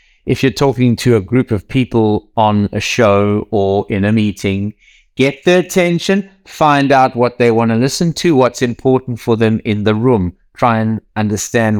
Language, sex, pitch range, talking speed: English, male, 105-140 Hz, 185 wpm